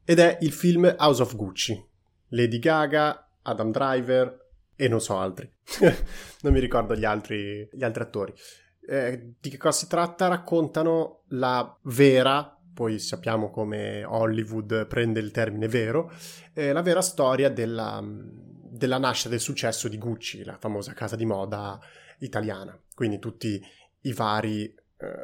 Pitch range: 110-145 Hz